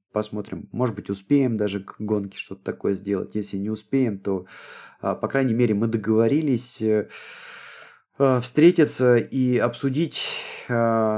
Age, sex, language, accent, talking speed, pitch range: 20-39, male, Russian, native, 120 wpm, 100-125 Hz